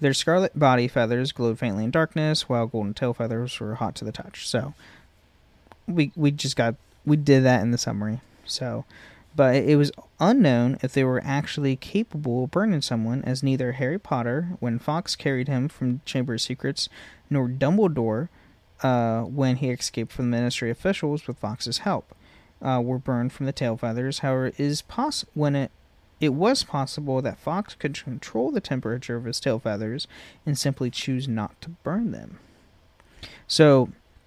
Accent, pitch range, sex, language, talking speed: American, 115-145 Hz, male, English, 175 wpm